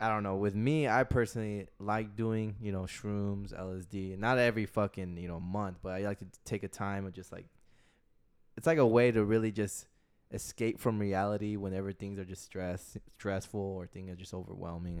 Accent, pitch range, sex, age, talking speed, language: American, 95-110 Hz, male, 10-29, 200 wpm, English